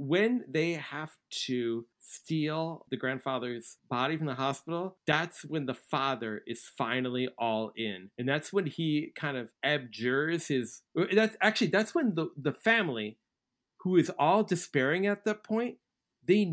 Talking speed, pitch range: 155 wpm, 125-175 Hz